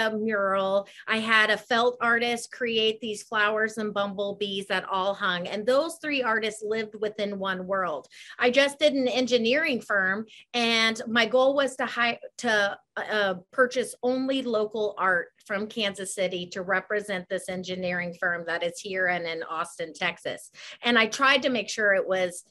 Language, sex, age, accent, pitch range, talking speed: English, female, 30-49, American, 195-255 Hz, 165 wpm